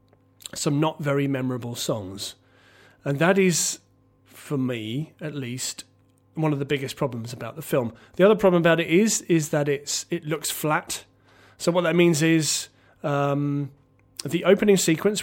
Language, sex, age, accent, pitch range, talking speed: English, male, 30-49, British, 125-160 Hz, 160 wpm